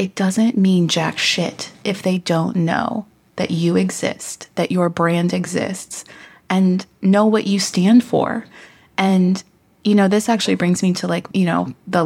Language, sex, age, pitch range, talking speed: English, female, 30-49, 170-205 Hz, 170 wpm